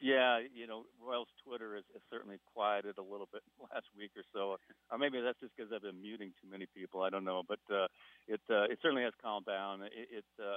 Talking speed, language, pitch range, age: 225 wpm, English, 95-110 Hz, 40-59